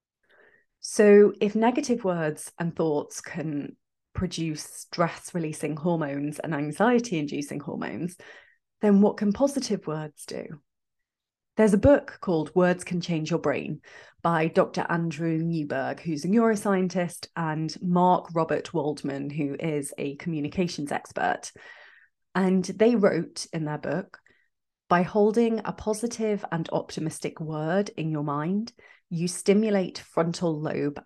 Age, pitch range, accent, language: 30-49, 155-195 Hz, British, English